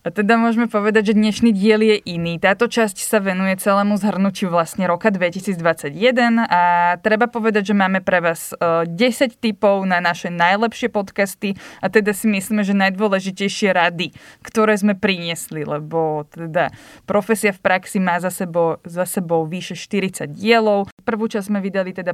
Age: 20-39